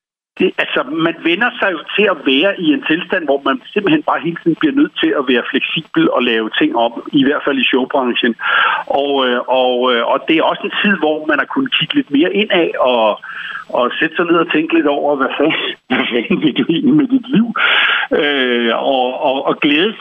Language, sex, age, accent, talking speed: Danish, male, 60-79, native, 205 wpm